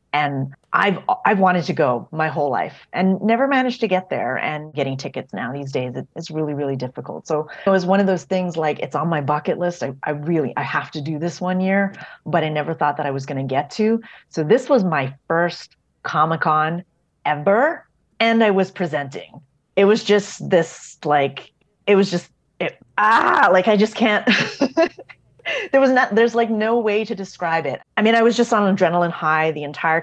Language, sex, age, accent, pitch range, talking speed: English, female, 30-49, American, 150-200 Hz, 205 wpm